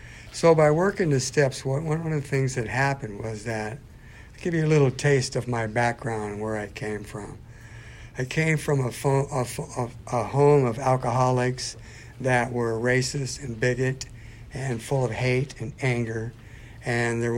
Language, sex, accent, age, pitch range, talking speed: English, male, American, 60-79, 110-130 Hz, 160 wpm